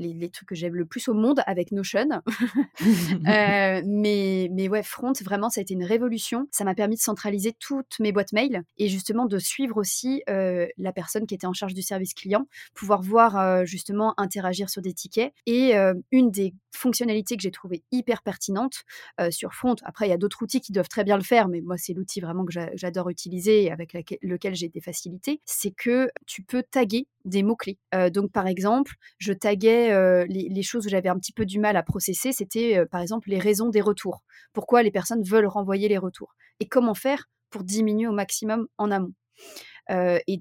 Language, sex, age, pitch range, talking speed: French, female, 30-49, 185-230 Hz, 215 wpm